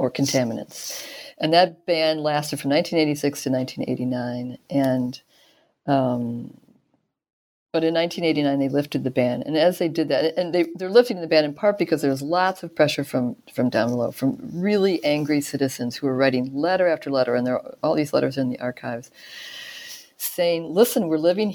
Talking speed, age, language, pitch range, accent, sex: 175 wpm, 50-69, English, 135-170 Hz, American, female